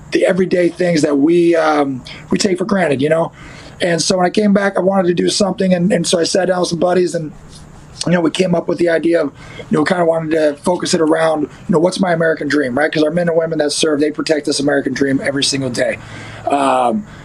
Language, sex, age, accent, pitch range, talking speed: English, male, 30-49, American, 150-175 Hz, 260 wpm